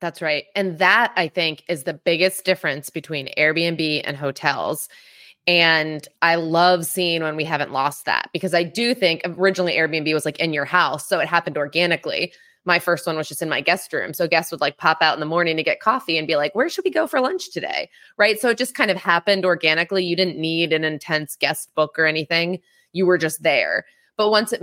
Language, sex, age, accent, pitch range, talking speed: English, female, 20-39, American, 160-185 Hz, 225 wpm